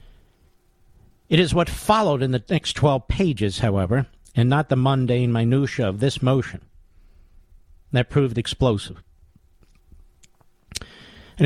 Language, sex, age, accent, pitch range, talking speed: English, male, 50-69, American, 105-150 Hz, 115 wpm